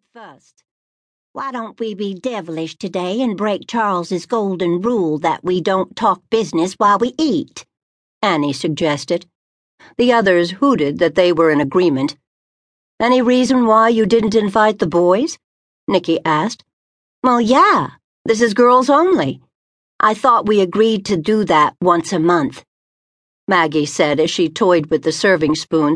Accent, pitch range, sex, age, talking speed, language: American, 160-220 Hz, female, 60-79, 150 wpm, English